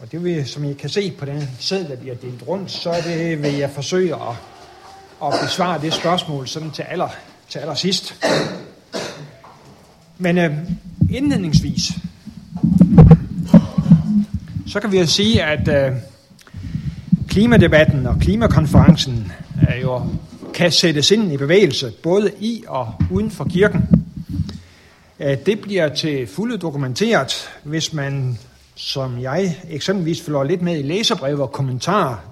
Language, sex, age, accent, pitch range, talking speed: Danish, male, 60-79, native, 135-180 Hz, 130 wpm